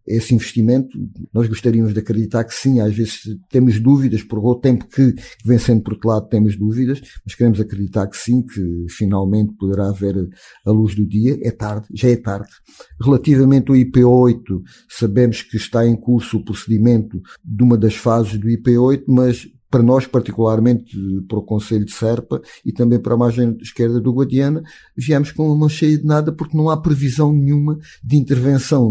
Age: 50-69